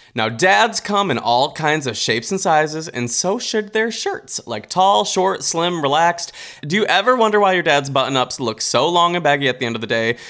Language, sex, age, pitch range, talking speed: English, male, 20-39, 135-215 Hz, 235 wpm